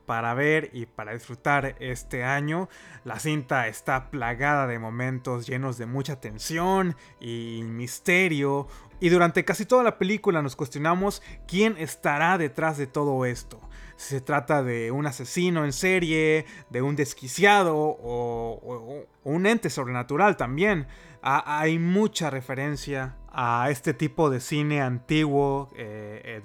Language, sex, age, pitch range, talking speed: Spanish, male, 30-49, 125-160 Hz, 140 wpm